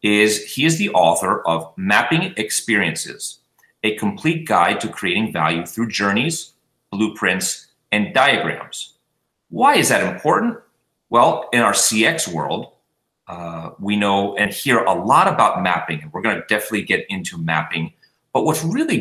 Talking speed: 150 wpm